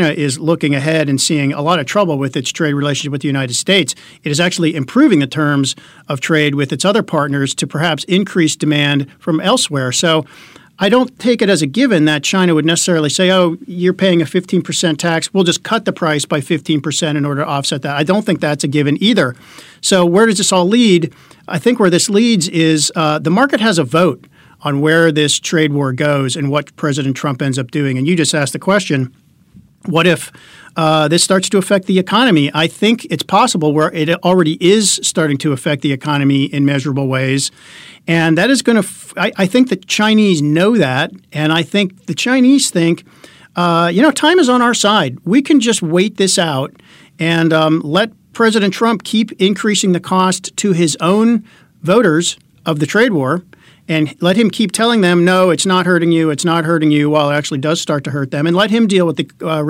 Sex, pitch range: male, 150-190 Hz